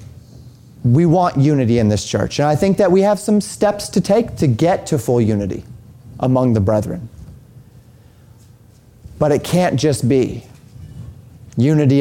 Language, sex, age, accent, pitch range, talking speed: English, male, 30-49, American, 120-155 Hz, 150 wpm